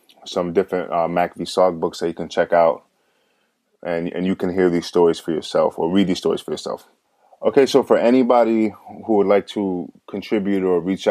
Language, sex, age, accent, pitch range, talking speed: English, male, 20-39, American, 90-105 Hz, 205 wpm